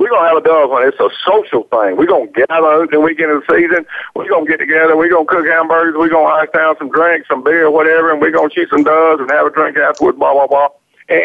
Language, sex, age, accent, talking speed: English, male, 50-69, American, 270 wpm